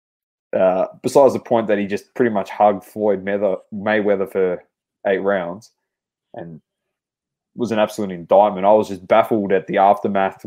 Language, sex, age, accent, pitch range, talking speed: English, male, 20-39, Australian, 105-140 Hz, 155 wpm